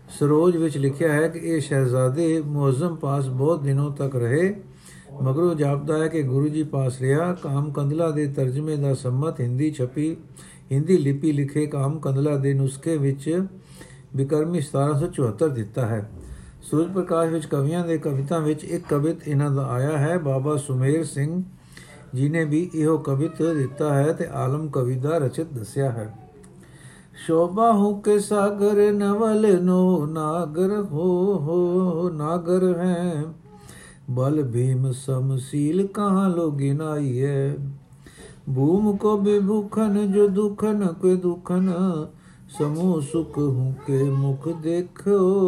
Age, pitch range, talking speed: 60-79, 140-180 Hz, 130 wpm